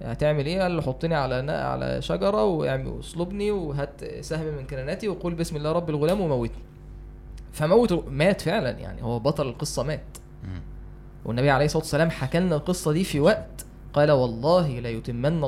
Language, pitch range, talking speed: Arabic, 130-170 Hz, 165 wpm